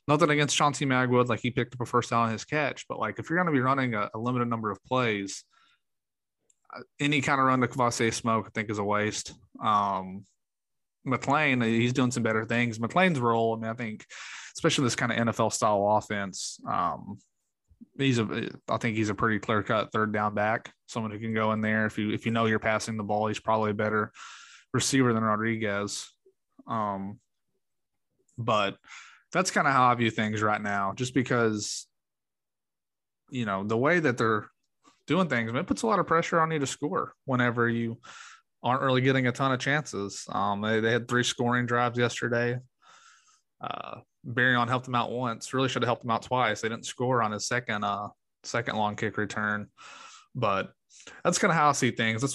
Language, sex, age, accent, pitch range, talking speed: English, male, 20-39, American, 110-130 Hz, 205 wpm